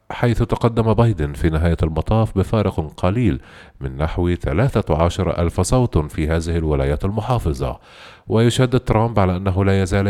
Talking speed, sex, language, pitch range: 135 wpm, male, Arabic, 80-115 Hz